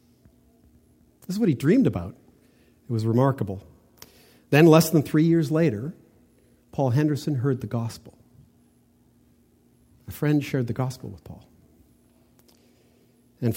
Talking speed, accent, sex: 120 wpm, American, male